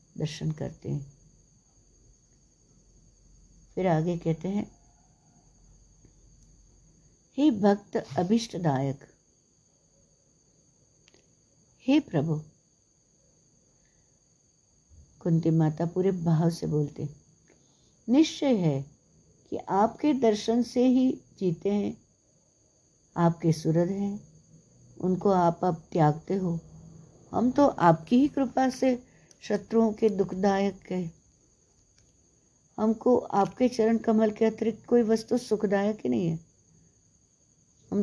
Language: Hindi